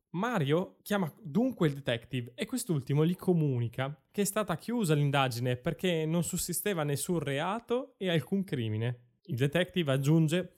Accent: native